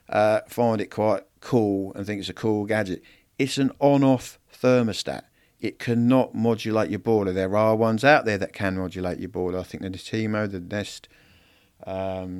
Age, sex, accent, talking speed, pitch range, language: 50-69, male, British, 185 wpm, 100-130 Hz, English